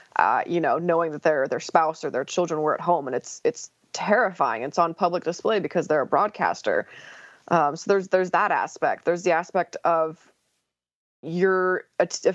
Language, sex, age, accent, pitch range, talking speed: English, female, 20-39, American, 165-205 Hz, 195 wpm